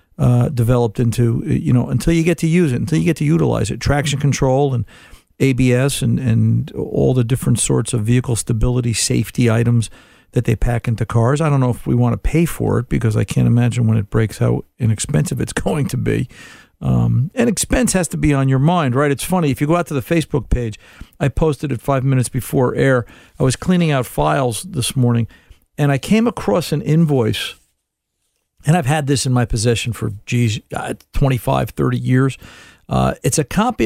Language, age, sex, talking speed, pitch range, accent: English, 50-69, male, 205 wpm, 120-155 Hz, American